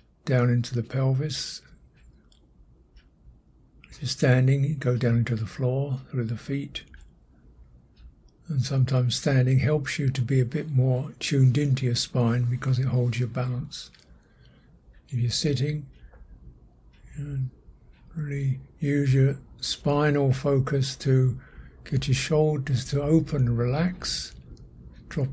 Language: English